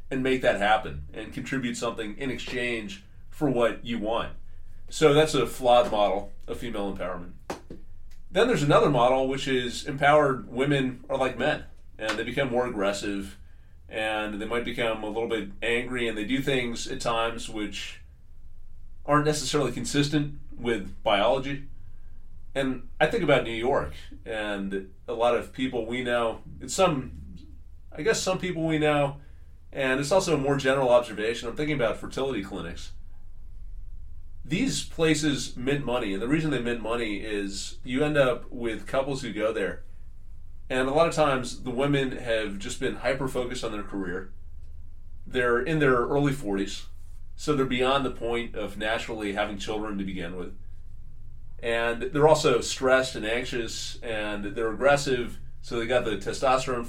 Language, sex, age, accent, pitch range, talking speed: English, male, 30-49, American, 95-130 Hz, 160 wpm